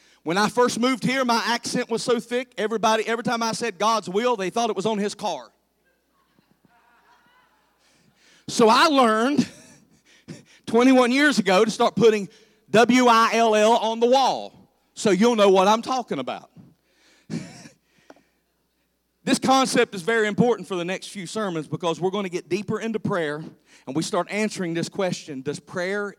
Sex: male